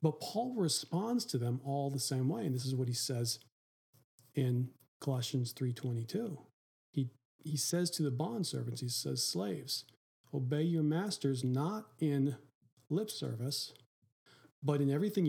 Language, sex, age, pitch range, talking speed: English, male, 40-59, 135-165 Hz, 145 wpm